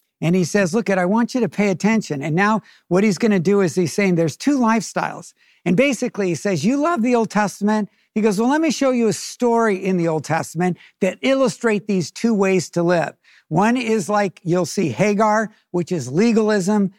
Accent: American